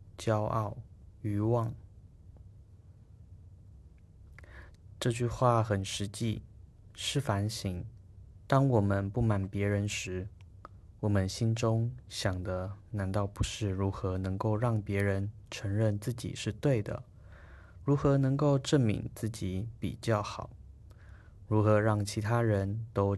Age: 20-39